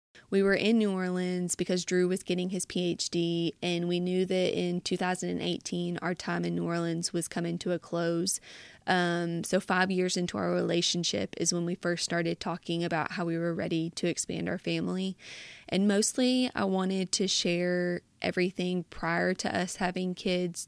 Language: English